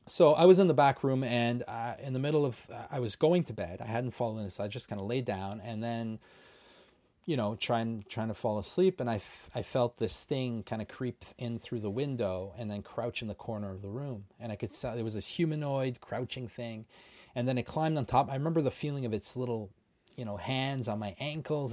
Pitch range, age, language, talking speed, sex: 110-135 Hz, 30-49, English, 250 wpm, male